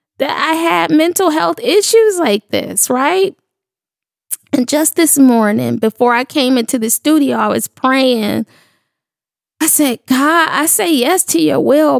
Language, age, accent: English, 10-29, American